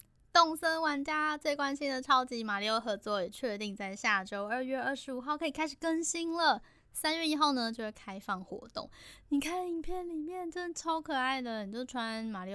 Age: 10-29